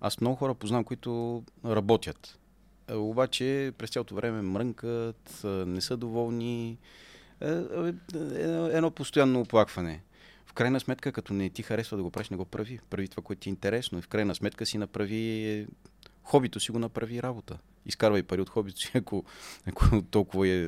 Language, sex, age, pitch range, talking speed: Bulgarian, male, 30-49, 90-115 Hz, 165 wpm